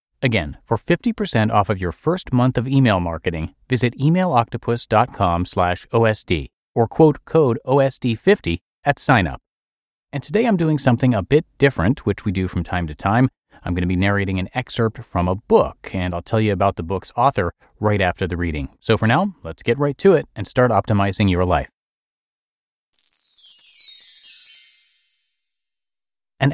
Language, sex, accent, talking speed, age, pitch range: English, male, American, 160 wpm, 30-49, 90-125 Hz